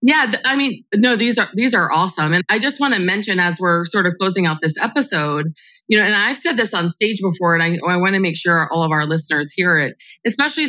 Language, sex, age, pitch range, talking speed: English, female, 20-39, 165-215 Hz, 260 wpm